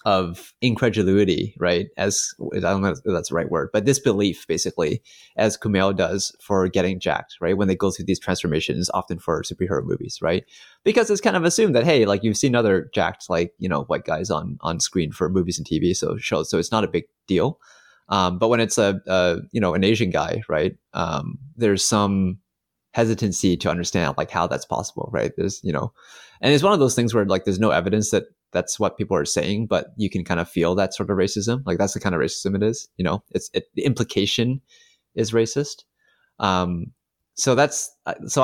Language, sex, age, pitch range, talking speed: English, male, 30-49, 90-115 Hz, 215 wpm